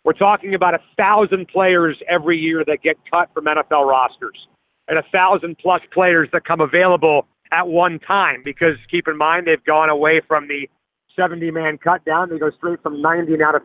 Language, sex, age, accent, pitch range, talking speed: English, male, 40-59, American, 175-215 Hz, 185 wpm